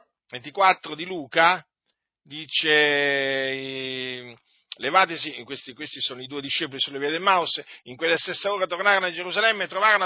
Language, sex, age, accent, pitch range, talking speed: Italian, male, 50-69, native, 180-245 Hz, 145 wpm